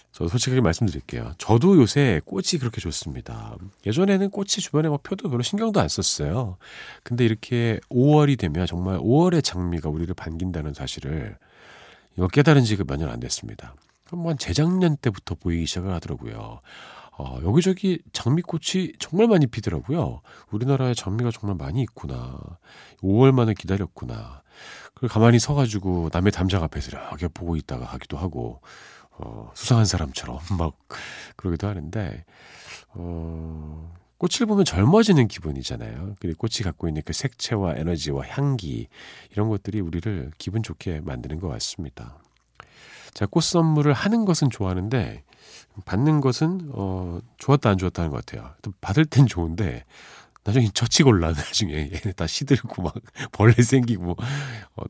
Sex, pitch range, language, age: male, 85-135 Hz, Korean, 40-59